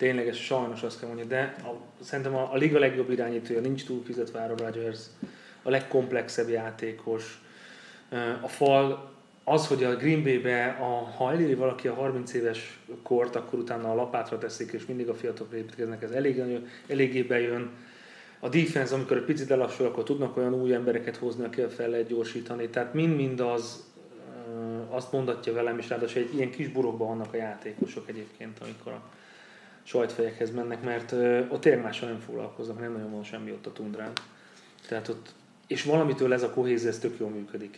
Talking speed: 175 wpm